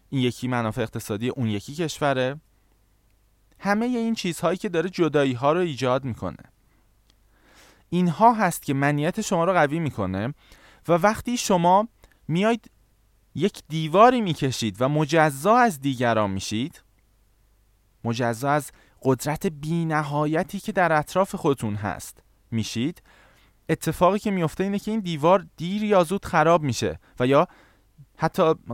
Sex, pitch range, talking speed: male, 110-170 Hz, 130 wpm